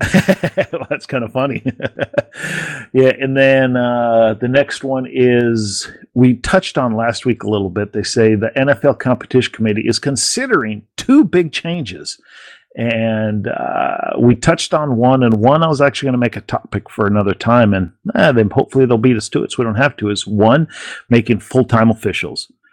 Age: 50-69